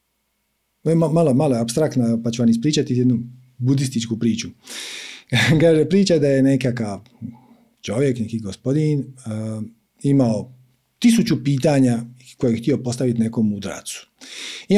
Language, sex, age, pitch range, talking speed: Croatian, male, 50-69, 115-155 Hz, 120 wpm